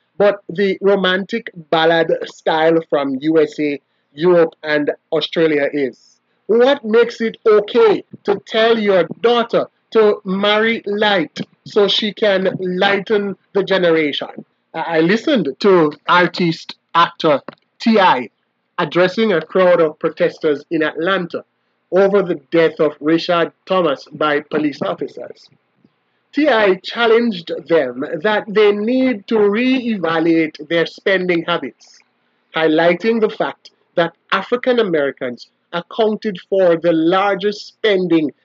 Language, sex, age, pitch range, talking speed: English, male, 30-49, 165-215 Hz, 110 wpm